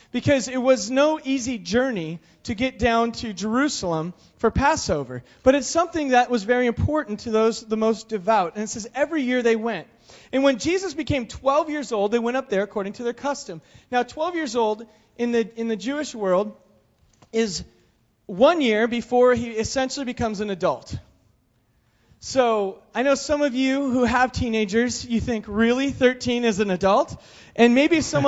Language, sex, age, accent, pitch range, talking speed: English, male, 30-49, American, 200-255 Hz, 180 wpm